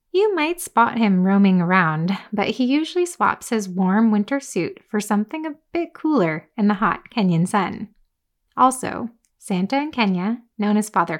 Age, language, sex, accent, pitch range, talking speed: 20-39, English, female, American, 190-270 Hz, 165 wpm